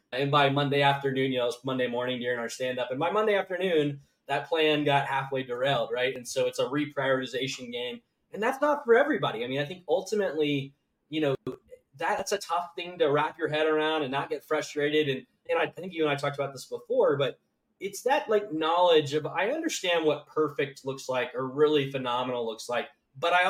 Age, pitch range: 20-39, 135-170 Hz